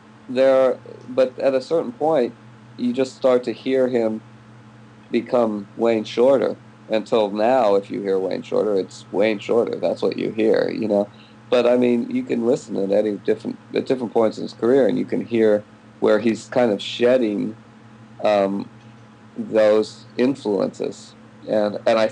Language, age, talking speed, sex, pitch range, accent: English, 50-69, 170 wpm, male, 105-115 Hz, American